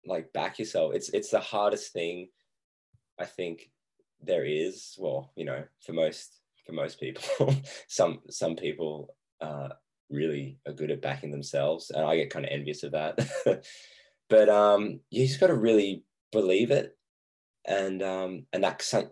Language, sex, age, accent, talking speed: English, male, 10-29, Australian, 160 wpm